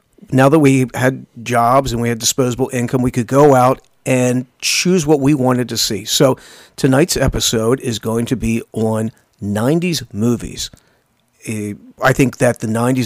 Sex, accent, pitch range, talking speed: male, American, 115-140 Hz, 160 wpm